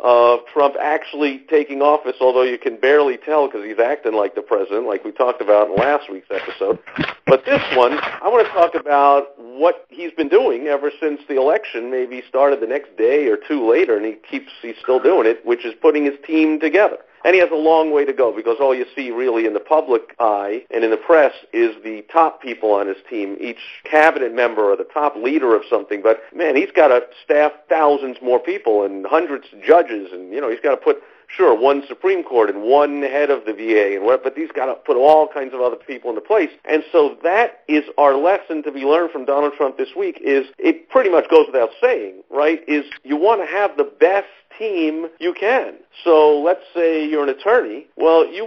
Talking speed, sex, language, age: 225 wpm, male, English, 50-69